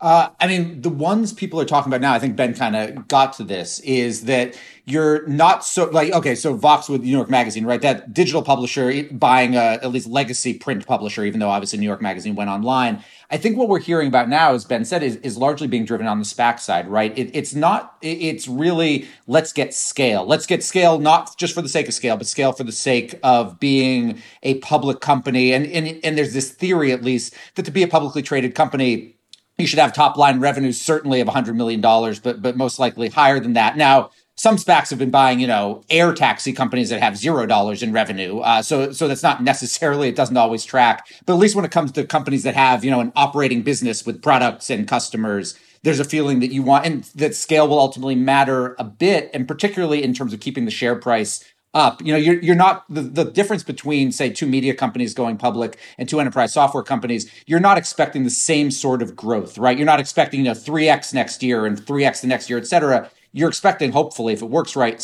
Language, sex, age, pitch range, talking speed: English, male, 30-49, 120-155 Hz, 235 wpm